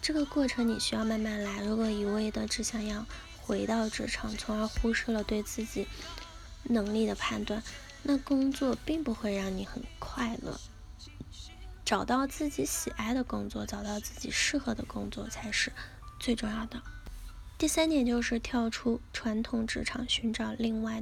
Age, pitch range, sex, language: 10-29, 220-255 Hz, female, Chinese